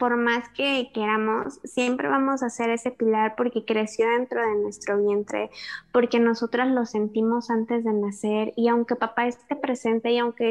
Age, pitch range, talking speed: 20-39, 210-235 Hz, 170 wpm